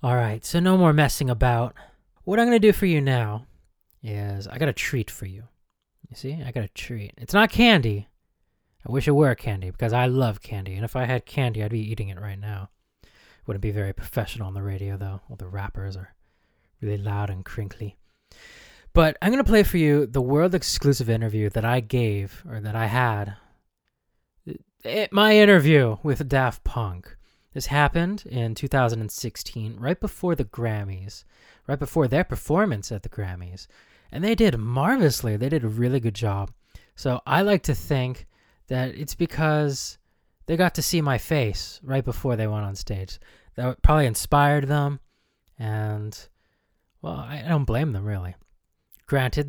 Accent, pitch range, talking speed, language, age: American, 105-145 Hz, 175 wpm, English, 20-39